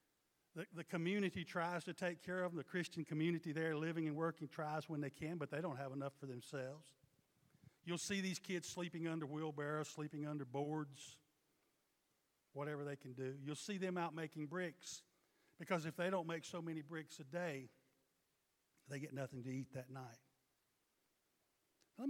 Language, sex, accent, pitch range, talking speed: English, male, American, 145-200 Hz, 175 wpm